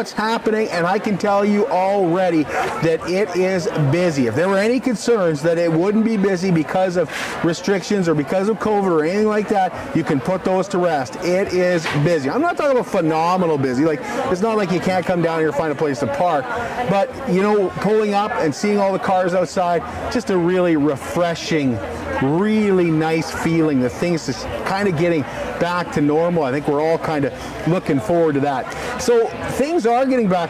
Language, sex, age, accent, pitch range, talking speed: English, male, 50-69, American, 165-215 Hz, 200 wpm